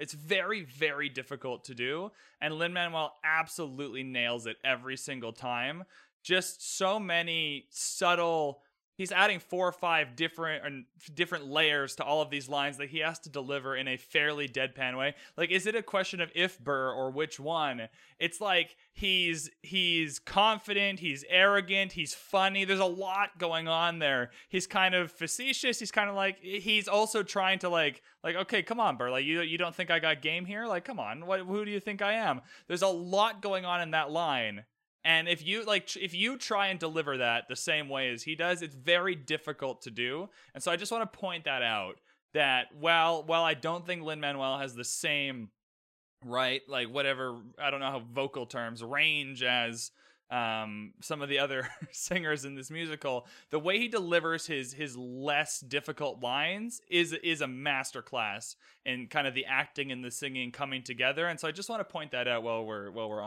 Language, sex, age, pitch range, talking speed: English, male, 20-39, 135-180 Hz, 195 wpm